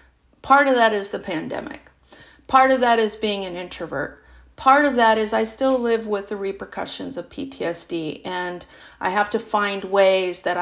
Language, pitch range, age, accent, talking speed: English, 185-230 Hz, 40-59, American, 180 wpm